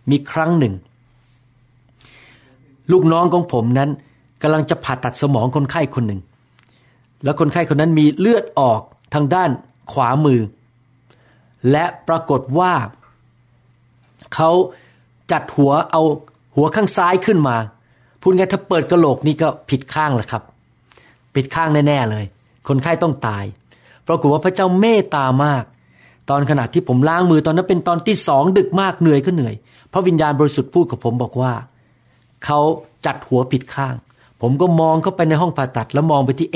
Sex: male